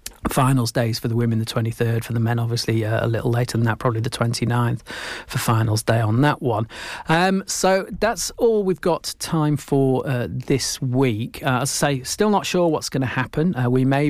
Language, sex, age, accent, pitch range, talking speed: English, male, 40-59, British, 120-140 Hz, 215 wpm